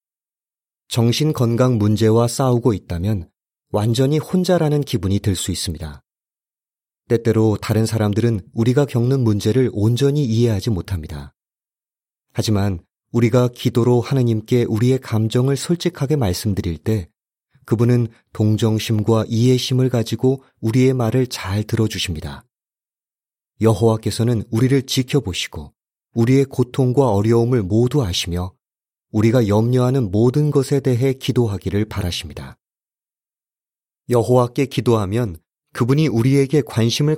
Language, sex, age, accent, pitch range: Korean, male, 30-49, native, 105-130 Hz